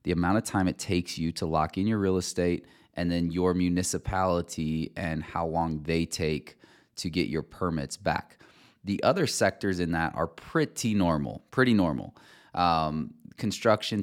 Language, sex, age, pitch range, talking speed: English, male, 20-39, 80-95 Hz, 165 wpm